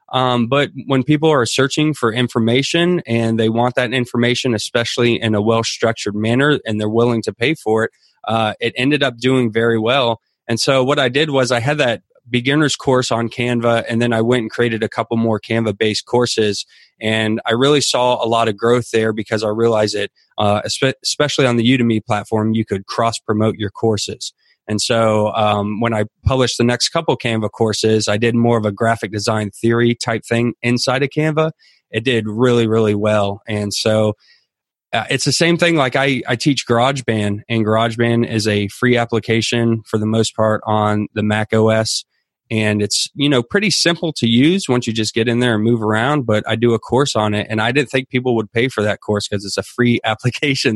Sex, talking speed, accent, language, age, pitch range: male, 205 wpm, American, English, 20-39, 110-125 Hz